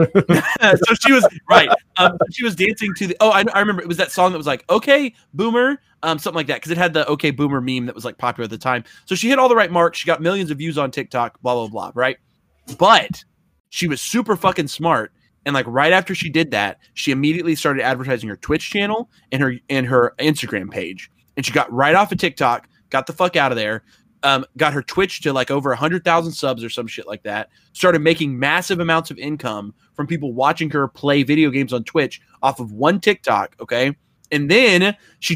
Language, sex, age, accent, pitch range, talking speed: English, male, 20-39, American, 135-180 Hz, 230 wpm